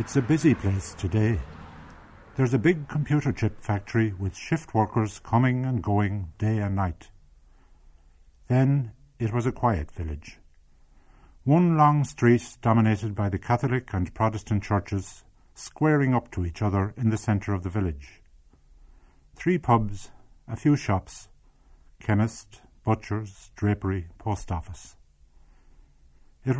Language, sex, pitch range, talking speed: English, male, 75-120 Hz, 130 wpm